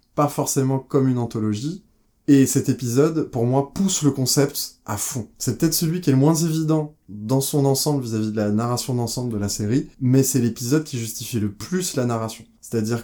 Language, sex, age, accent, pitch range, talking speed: French, male, 20-39, French, 105-135 Hz, 200 wpm